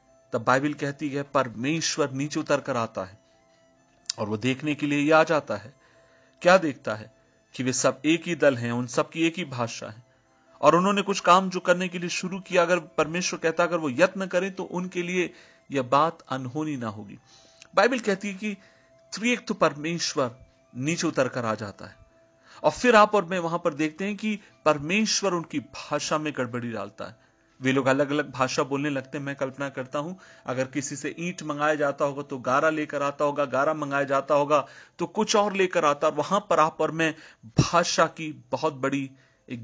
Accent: native